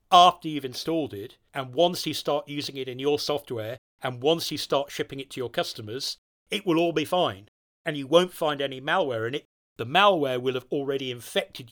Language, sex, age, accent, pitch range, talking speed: English, male, 40-59, British, 115-145 Hz, 210 wpm